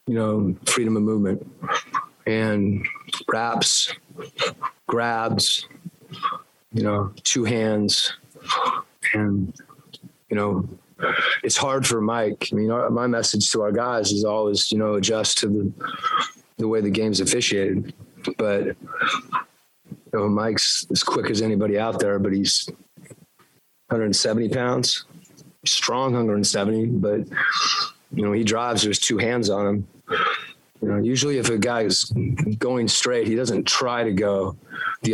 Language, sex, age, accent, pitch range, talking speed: English, male, 30-49, American, 100-115 Hz, 135 wpm